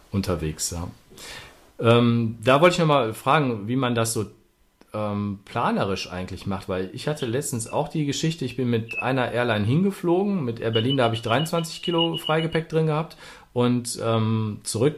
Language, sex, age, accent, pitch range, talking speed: German, male, 40-59, German, 105-140 Hz, 170 wpm